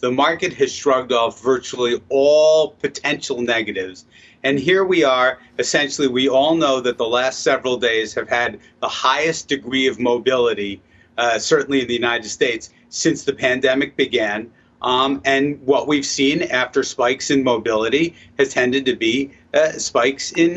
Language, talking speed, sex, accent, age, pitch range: English, 160 wpm, male, American, 40-59, 125-165 Hz